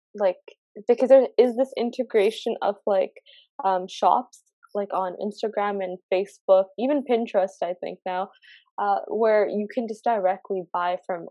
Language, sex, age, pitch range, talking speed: English, female, 10-29, 185-240 Hz, 150 wpm